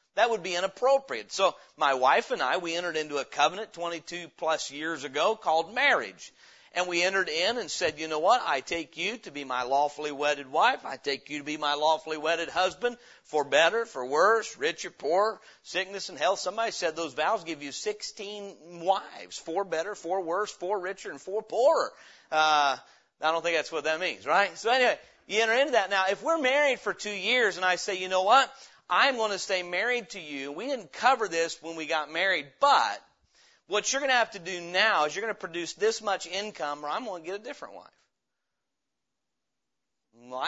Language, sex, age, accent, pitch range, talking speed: English, male, 40-59, American, 160-215 Hz, 210 wpm